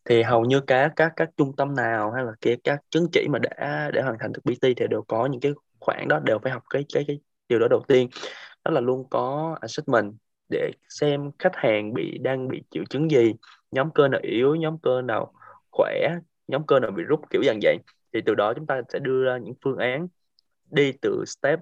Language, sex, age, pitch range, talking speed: Vietnamese, male, 20-39, 130-165 Hz, 235 wpm